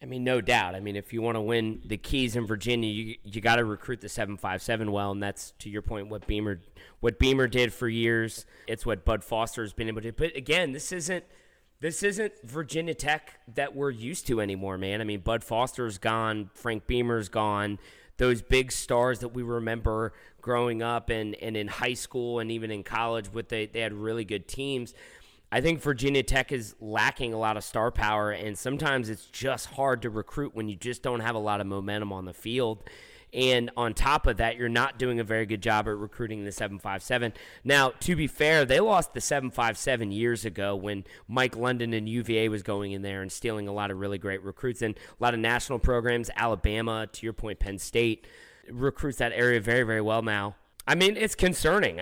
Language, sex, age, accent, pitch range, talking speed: English, male, 30-49, American, 105-125 Hz, 220 wpm